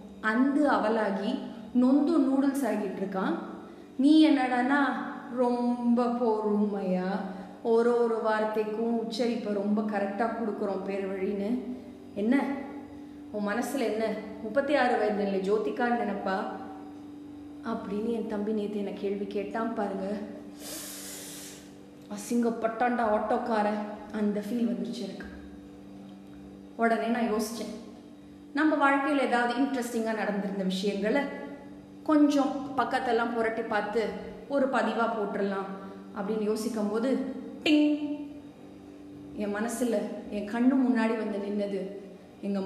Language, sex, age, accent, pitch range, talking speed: Tamil, female, 20-39, native, 200-245 Hz, 90 wpm